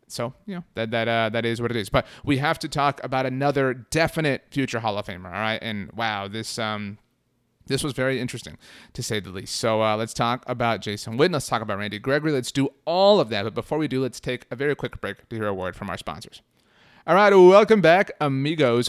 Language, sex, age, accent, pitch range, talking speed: English, male, 30-49, American, 115-145 Hz, 240 wpm